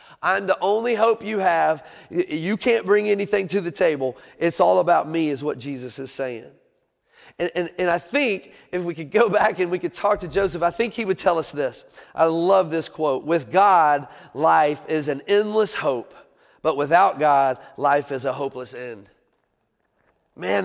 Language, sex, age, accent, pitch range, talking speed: English, male, 40-59, American, 165-220 Hz, 190 wpm